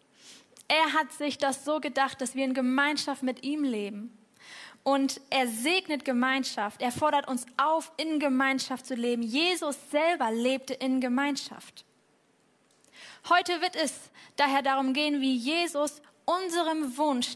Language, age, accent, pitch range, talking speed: German, 10-29, German, 230-275 Hz, 140 wpm